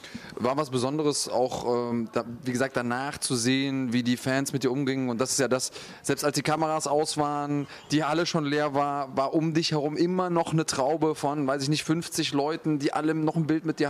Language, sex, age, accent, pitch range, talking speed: German, male, 20-39, German, 125-150 Hz, 235 wpm